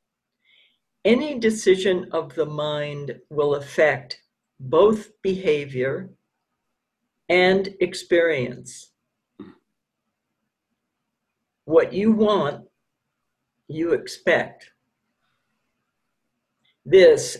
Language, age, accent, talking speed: English, 60-79, American, 60 wpm